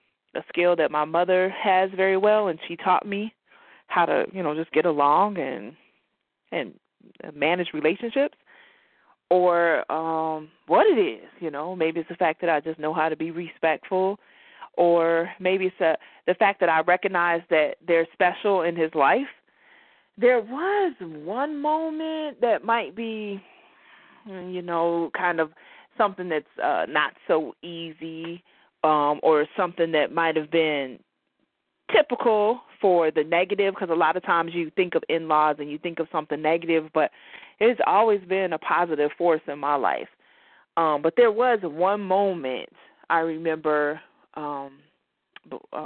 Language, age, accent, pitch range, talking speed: English, 20-39, American, 155-195 Hz, 155 wpm